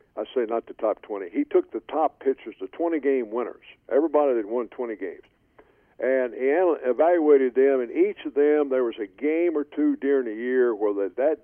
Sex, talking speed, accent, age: male, 200 wpm, American, 50-69